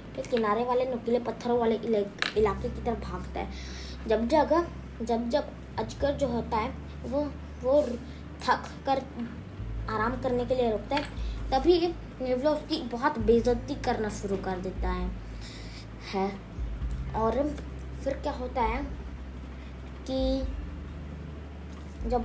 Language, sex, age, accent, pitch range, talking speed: English, female, 20-39, Indian, 190-280 Hz, 125 wpm